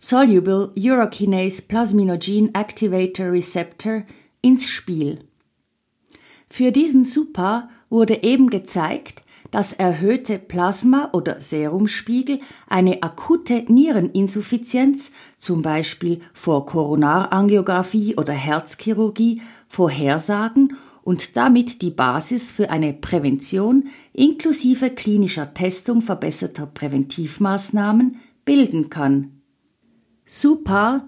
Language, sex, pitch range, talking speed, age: German, female, 180-245 Hz, 85 wpm, 50-69